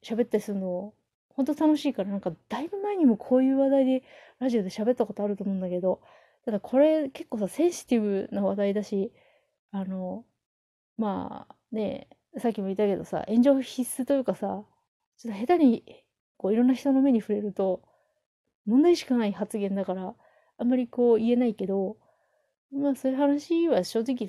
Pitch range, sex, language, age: 195-265 Hz, female, Japanese, 30-49